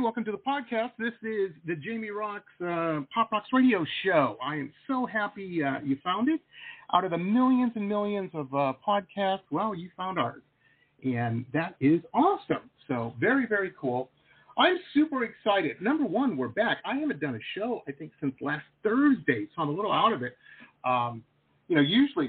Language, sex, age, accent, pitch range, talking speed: English, male, 40-59, American, 135-225 Hz, 190 wpm